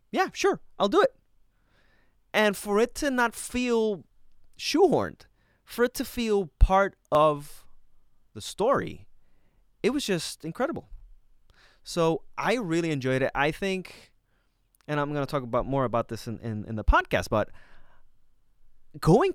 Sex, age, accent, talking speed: male, 20-39, American, 145 wpm